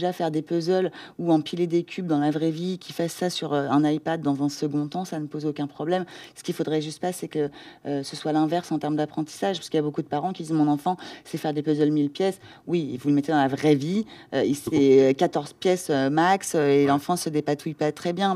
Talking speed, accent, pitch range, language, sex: 245 wpm, French, 145-170 Hz, French, female